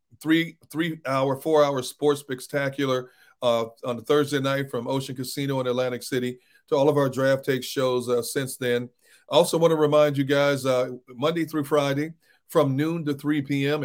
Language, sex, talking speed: English, male, 180 wpm